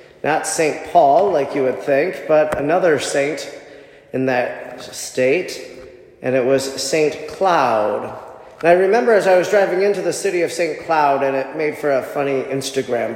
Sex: male